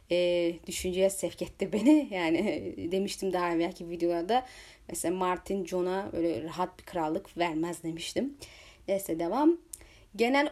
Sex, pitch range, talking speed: female, 195-270 Hz, 125 wpm